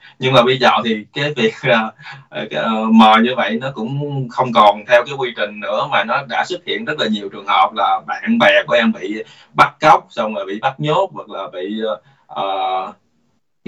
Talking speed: 215 wpm